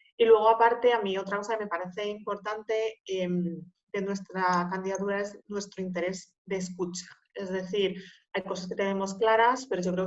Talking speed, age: 175 wpm, 30-49